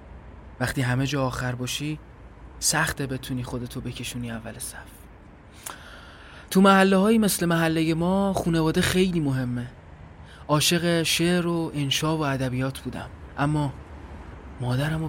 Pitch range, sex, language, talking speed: 100-155 Hz, male, Persian, 110 wpm